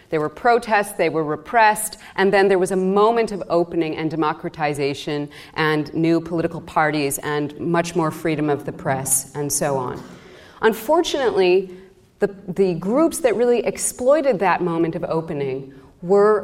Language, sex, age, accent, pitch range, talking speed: English, female, 30-49, American, 155-205 Hz, 155 wpm